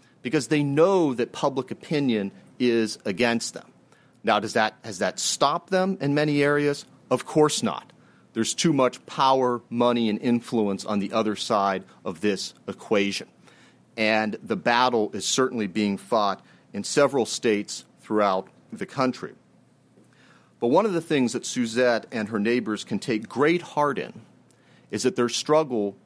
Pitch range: 110-145 Hz